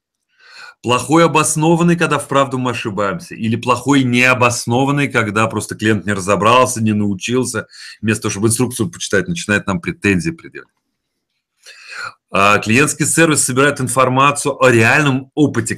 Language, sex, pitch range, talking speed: Russian, male, 105-145 Hz, 125 wpm